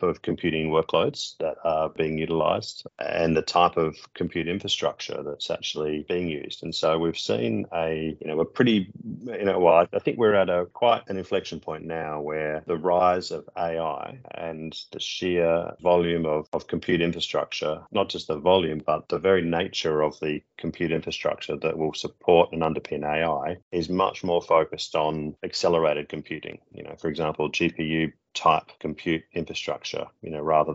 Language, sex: English, male